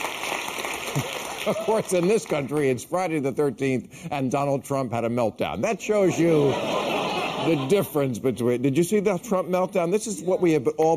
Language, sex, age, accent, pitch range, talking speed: English, male, 50-69, American, 120-185 Hz, 180 wpm